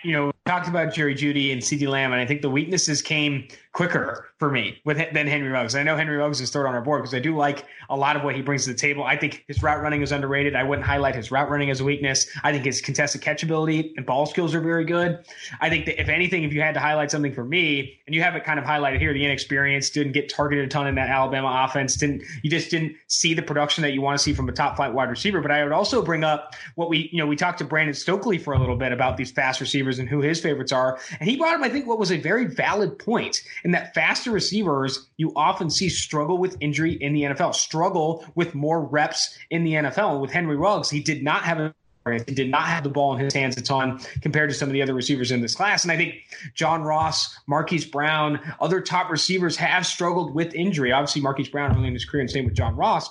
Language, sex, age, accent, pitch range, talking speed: English, male, 20-39, American, 140-165 Hz, 270 wpm